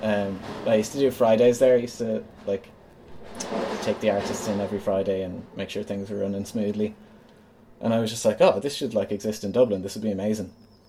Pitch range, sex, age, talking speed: 100-110 Hz, male, 20-39, 220 wpm